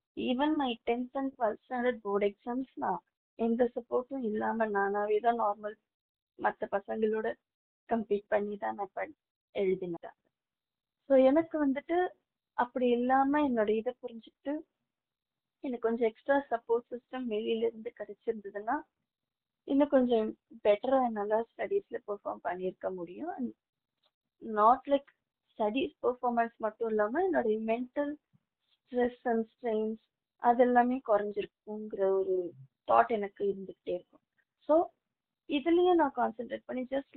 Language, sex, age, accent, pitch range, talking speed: Tamil, female, 20-39, native, 205-260 Hz, 105 wpm